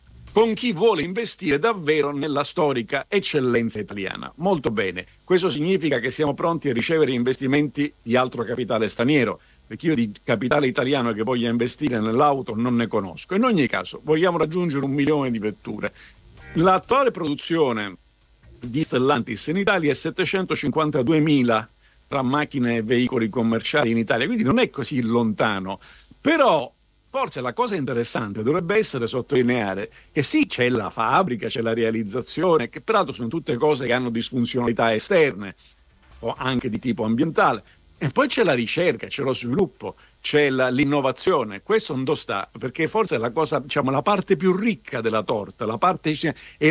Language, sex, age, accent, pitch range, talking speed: Italian, male, 50-69, native, 115-160 Hz, 160 wpm